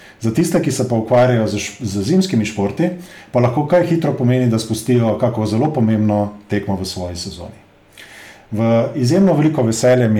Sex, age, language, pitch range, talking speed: male, 40-59, English, 105-125 Hz, 165 wpm